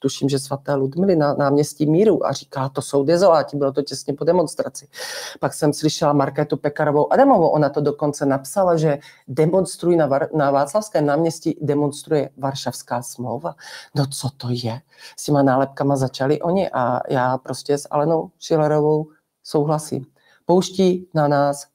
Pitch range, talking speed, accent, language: 140-165 Hz, 150 wpm, native, Czech